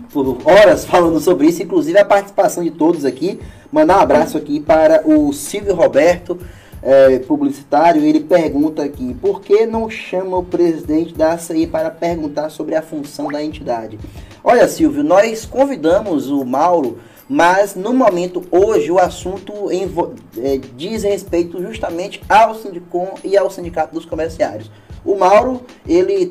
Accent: Brazilian